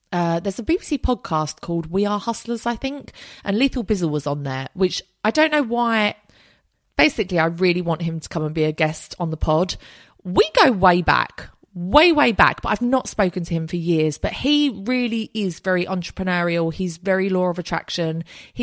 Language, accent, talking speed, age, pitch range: English, British, 205 wpm, 30-49, 170-230 Hz